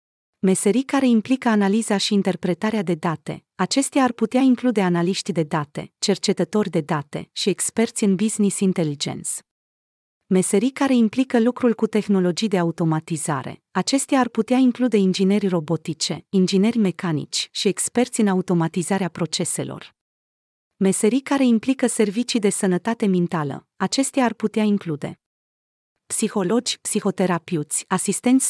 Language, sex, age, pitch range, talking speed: Romanian, female, 30-49, 175-225 Hz, 120 wpm